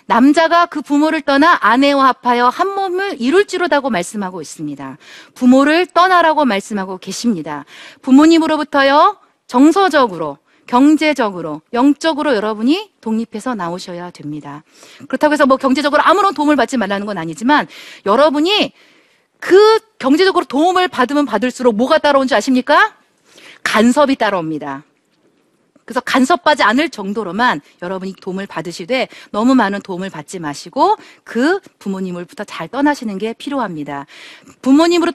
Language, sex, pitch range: Korean, female, 215-315 Hz